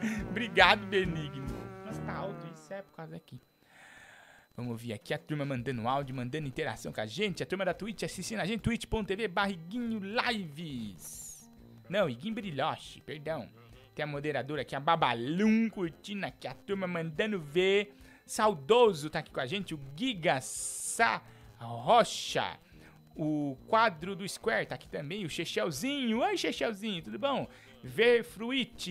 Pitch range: 145-220 Hz